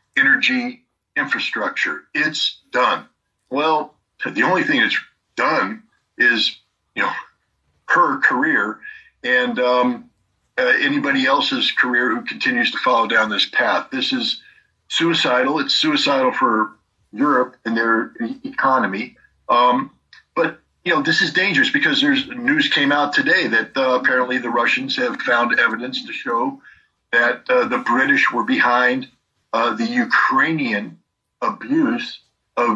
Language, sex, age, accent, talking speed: English, male, 50-69, American, 130 wpm